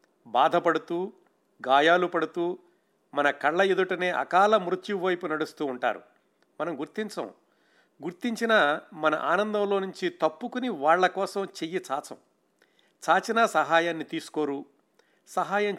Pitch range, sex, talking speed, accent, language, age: 145-190 Hz, male, 95 wpm, native, Telugu, 50-69